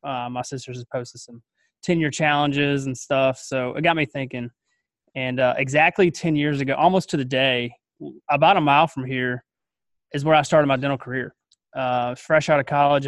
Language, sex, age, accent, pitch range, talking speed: English, male, 20-39, American, 130-150 Hz, 195 wpm